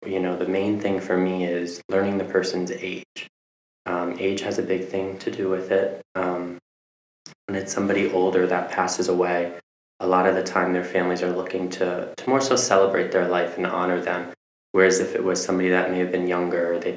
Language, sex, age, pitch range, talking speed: English, male, 20-39, 90-95 Hz, 215 wpm